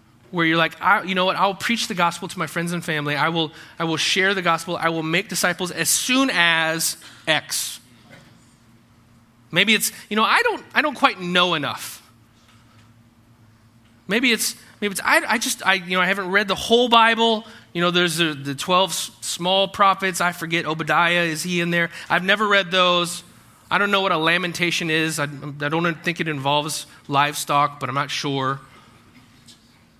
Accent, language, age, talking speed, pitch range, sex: American, English, 30-49, 190 wpm, 140-200 Hz, male